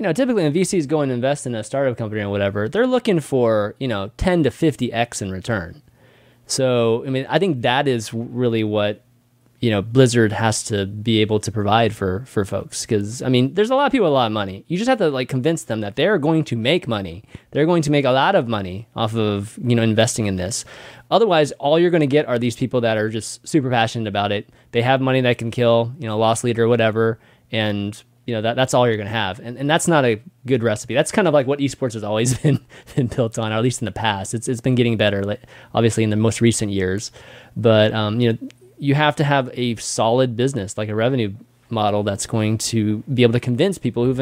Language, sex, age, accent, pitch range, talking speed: English, male, 20-39, American, 110-140 Hz, 250 wpm